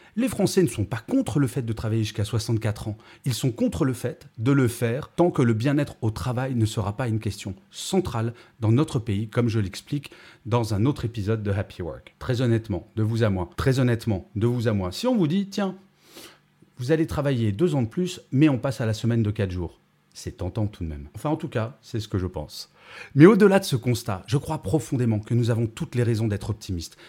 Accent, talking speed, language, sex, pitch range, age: French, 240 wpm, French, male, 105-145 Hz, 30-49